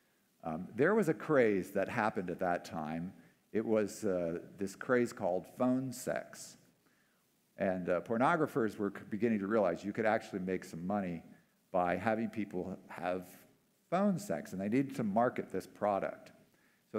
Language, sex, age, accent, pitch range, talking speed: English, male, 50-69, American, 95-130 Hz, 160 wpm